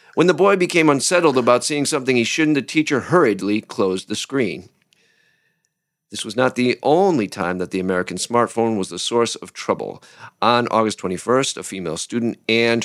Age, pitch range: 50-69, 95-130 Hz